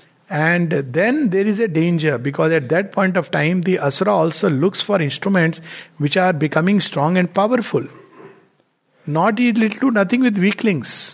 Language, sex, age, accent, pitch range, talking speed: English, male, 60-79, Indian, 145-190 Hz, 160 wpm